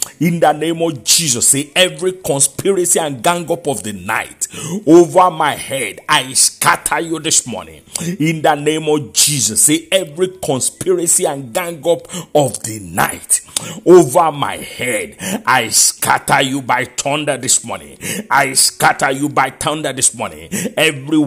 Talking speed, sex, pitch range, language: 150 wpm, male, 140-180 Hz, English